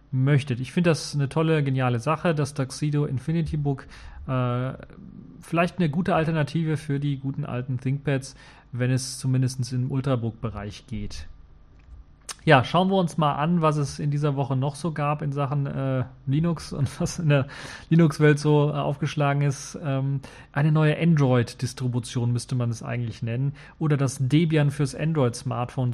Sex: male